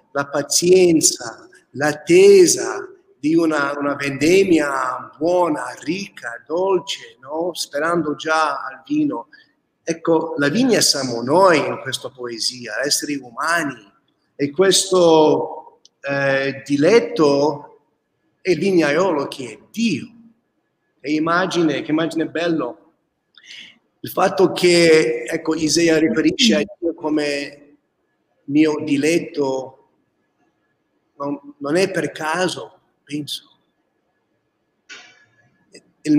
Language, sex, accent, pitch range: Italian, male, native, 145-180 Hz